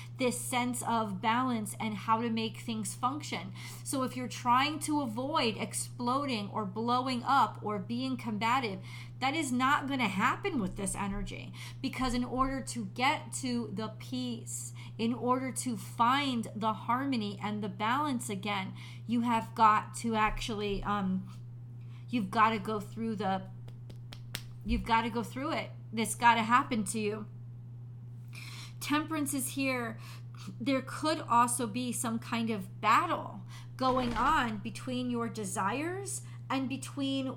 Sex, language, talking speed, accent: female, English, 150 wpm, American